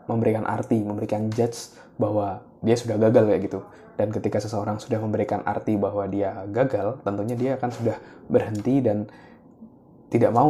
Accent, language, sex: native, Indonesian, male